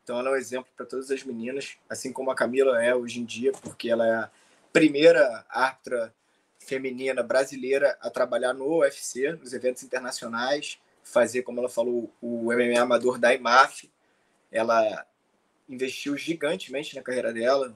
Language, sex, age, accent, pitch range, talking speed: Portuguese, male, 20-39, Brazilian, 125-155 Hz, 160 wpm